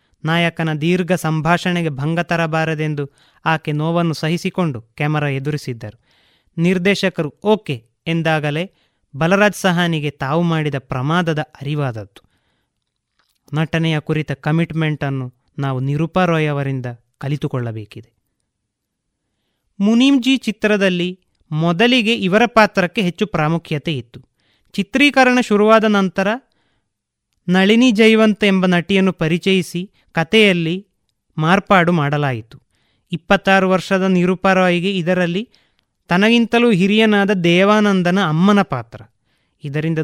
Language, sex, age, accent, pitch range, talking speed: Kannada, male, 20-39, native, 145-195 Hz, 80 wpm